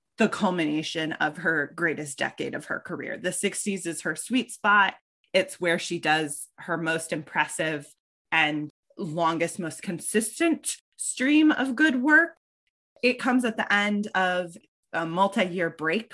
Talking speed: 145 wpm